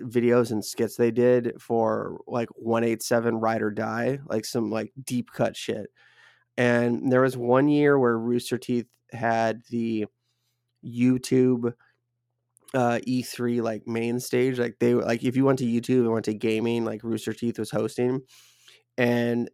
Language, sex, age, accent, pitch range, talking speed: English, male, 20-39, American, 115-125 Hz, 160 wpm